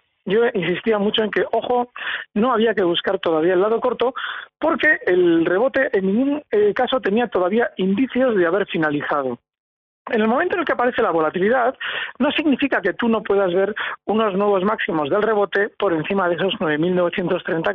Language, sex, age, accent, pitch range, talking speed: Spanish, male, 40-59, Spanish, 195-255 Hz, 175 wpm